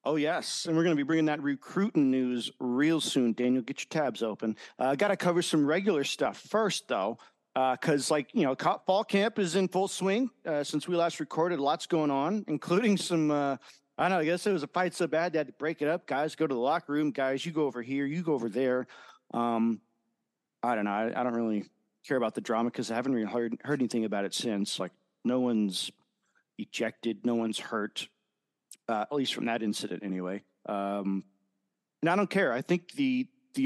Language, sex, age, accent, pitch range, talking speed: English, male, 40-59, American, 125-180 Hz, 225 wpm